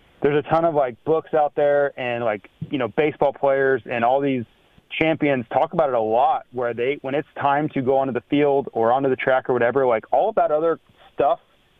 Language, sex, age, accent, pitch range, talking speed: English, male, 30-49, American, 120-145 Hz, 230 wpm